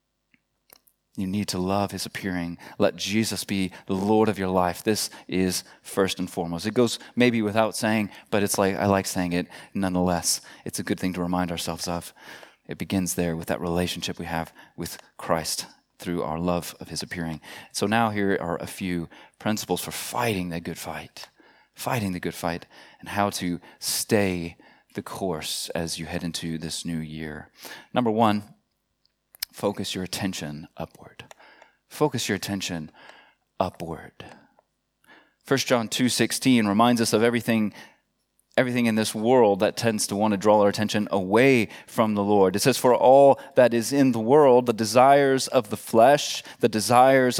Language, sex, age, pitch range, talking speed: English, male, 30-49, 90-120 Hz, 170 wpm